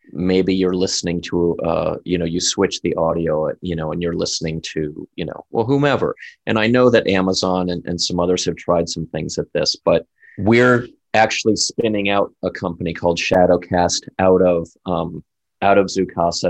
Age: 30-49